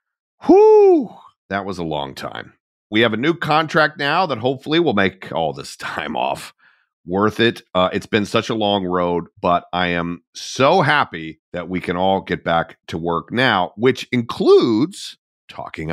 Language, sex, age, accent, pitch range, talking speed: English, male, 40-59, American, 90-140 Hz, 175 wpm